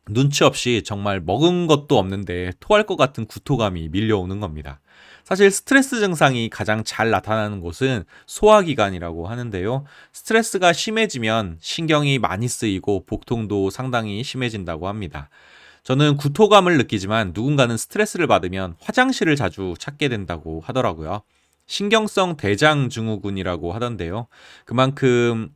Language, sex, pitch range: Korean, male, 95-150 Hz